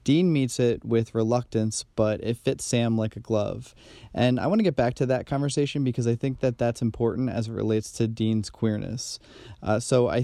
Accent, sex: American, male